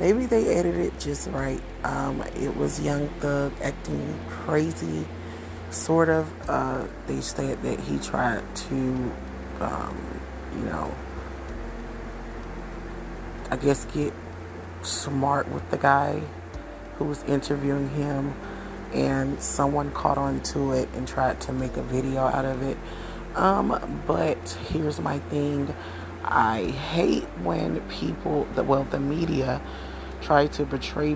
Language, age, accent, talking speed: English, 30-49, American, 125 wpm